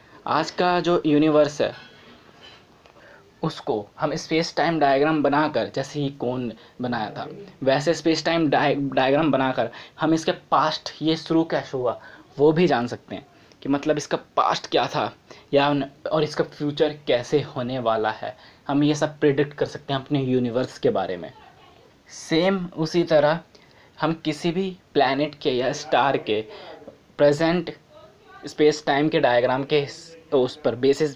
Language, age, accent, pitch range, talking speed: Hindi, 20-39, native, 135-160 Hz, 160 wpm